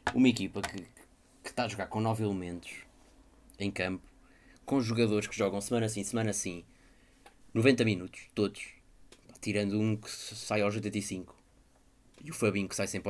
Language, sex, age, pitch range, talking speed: Portuguese, male, 20-39, 100-120 Hz, 160 wpm